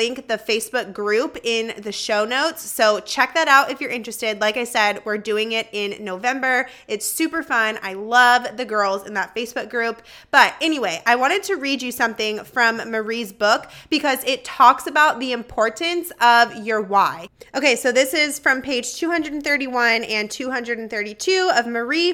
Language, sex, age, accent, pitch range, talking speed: English, female, 20-39, American, 220-275 Hz, 175 wpm